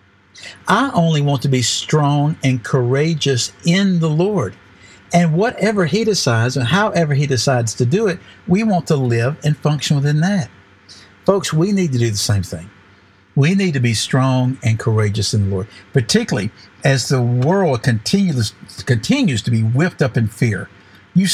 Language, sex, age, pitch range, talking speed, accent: English, male, 60-79, 100-155 Hz, 170 wpm, American